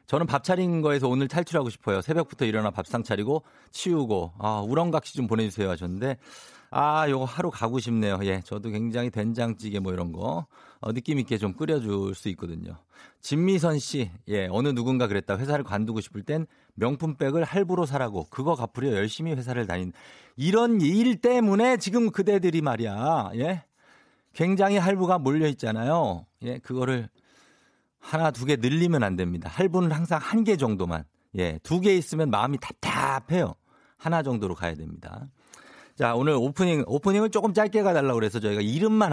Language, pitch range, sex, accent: Korean, 105-170 Hz, male, native